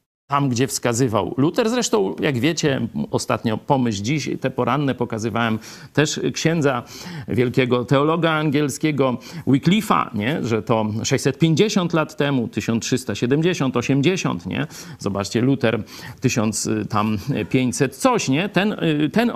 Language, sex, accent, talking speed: Polish, male, native, 110 wpm